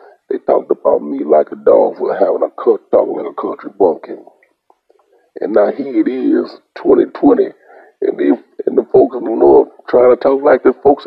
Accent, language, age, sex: American, English, 40-59, male